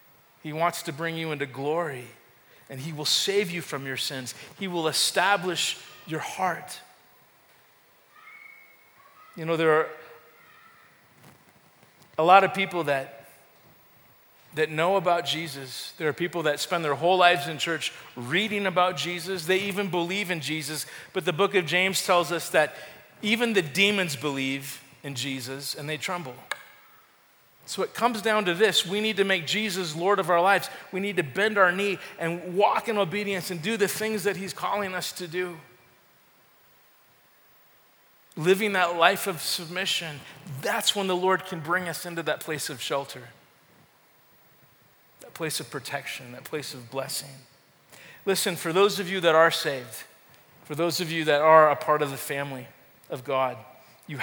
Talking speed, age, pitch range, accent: 165 wpm, 40-59, 145-190 Hz, American